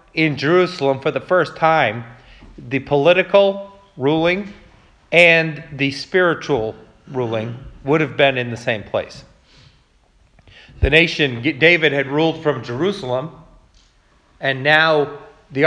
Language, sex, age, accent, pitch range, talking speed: English, male, 40-59, American, 120-160 Hz, 115 wpm